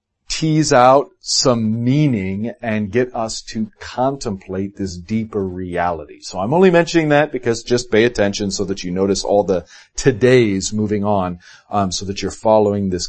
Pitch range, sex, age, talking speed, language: 95-125 Hz, male, 40-59, 165 wpm, English